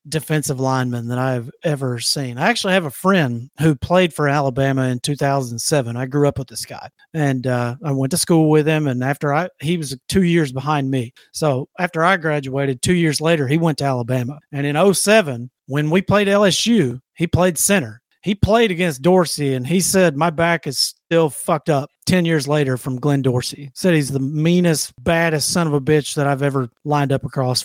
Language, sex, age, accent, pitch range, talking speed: English, male, 40-59, American, 135-170 Hz, 205 wpm